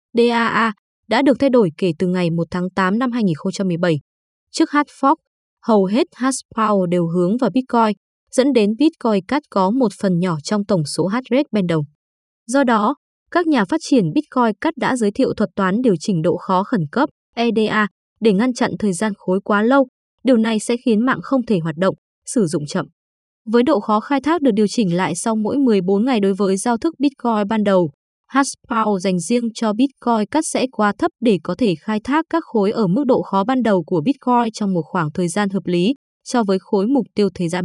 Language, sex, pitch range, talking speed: Vietnamese, female, 195-250 Hz, 215 wpm